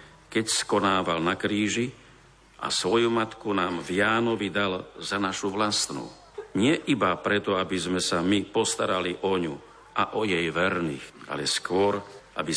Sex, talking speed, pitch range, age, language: male, 150 wpm, 95-115 Hz, 50-69, Slovak